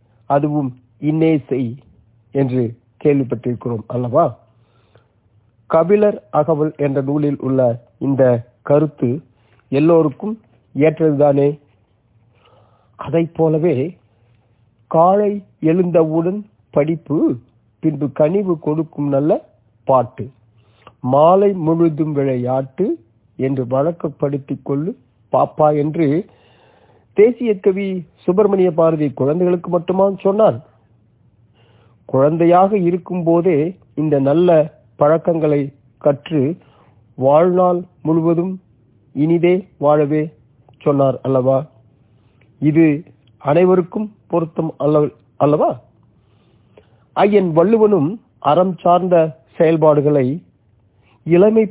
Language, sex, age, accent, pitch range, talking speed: Tamil, male, 50-69, native, 120-170 Hz, 60 wpm